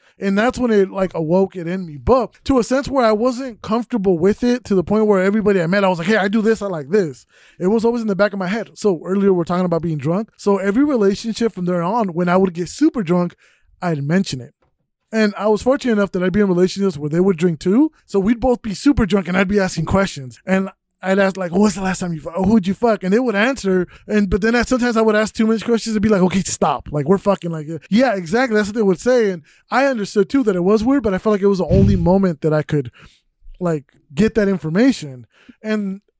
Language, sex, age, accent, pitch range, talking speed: English, male, 20-39, American, 185-230 Hz, 270 wpm